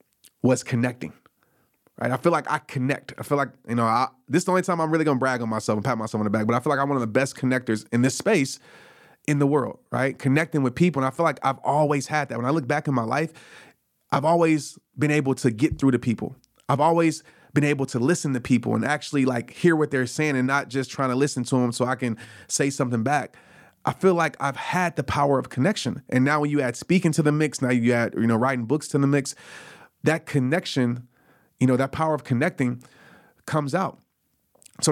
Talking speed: 245 wpm